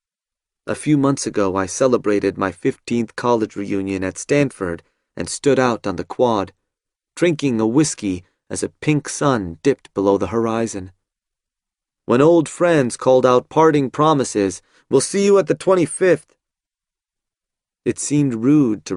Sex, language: male, Chinese